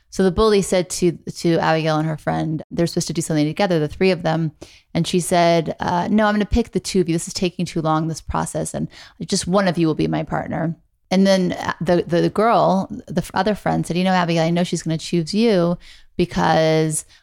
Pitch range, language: 170-200 Hz, English